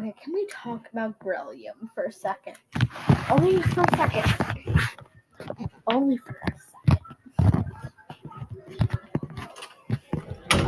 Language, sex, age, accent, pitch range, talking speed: English, female, 10-29, American, 180-285 Hz, 100 wpm